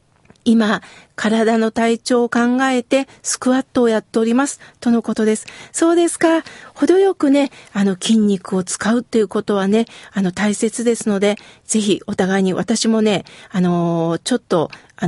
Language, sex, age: Japanese, female, 40-59